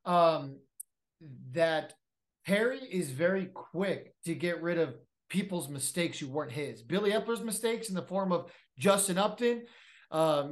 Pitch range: 170-220 Hz